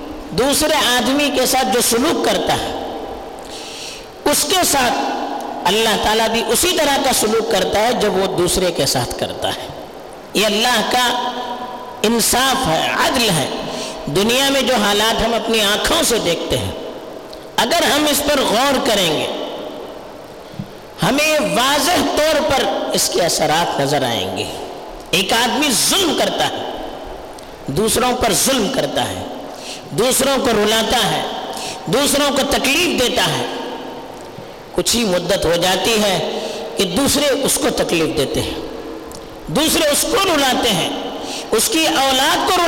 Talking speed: 145 wpm